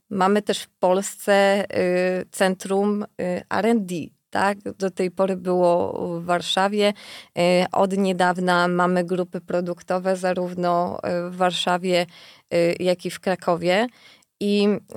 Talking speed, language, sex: 105 wpm, Polish, female